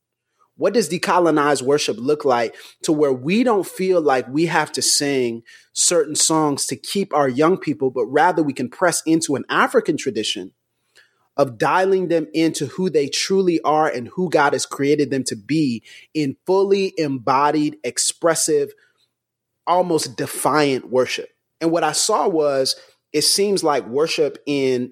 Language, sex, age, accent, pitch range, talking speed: English, male, 30-49, American, 135-180 Hz, 155 wpm